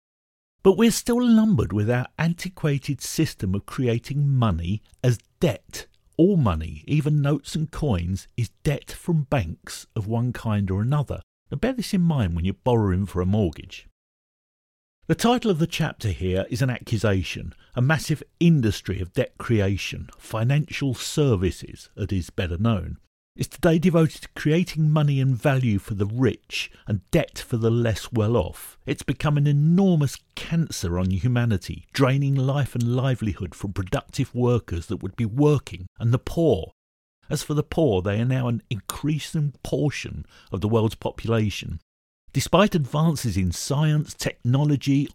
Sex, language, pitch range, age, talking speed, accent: male, English, 100-150 Hz, 50-69, 155 wpm, British